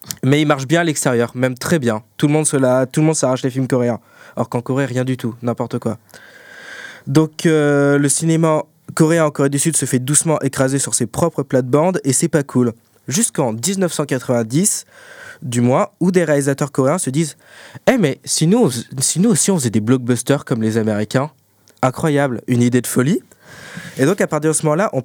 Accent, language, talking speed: French, French, 215 wpm